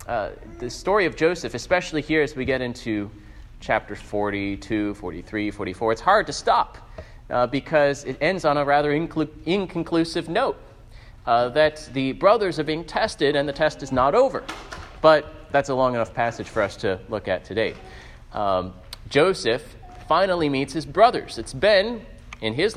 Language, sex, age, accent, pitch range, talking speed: English, male, 30-49, American, 115-165 Hz, 165 wpm